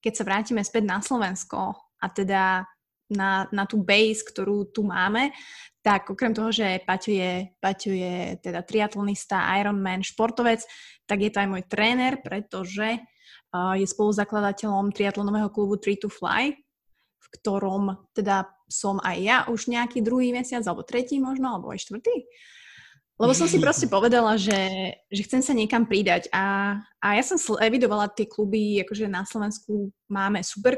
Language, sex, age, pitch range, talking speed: Slovak, female, 20-39, 200-235 Hz, 155 wpm